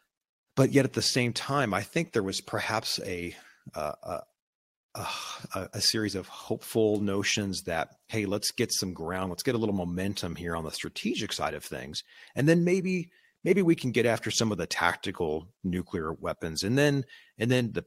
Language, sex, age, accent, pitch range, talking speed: English, male, 40-59, American, 90-115 Hz, 190 wpm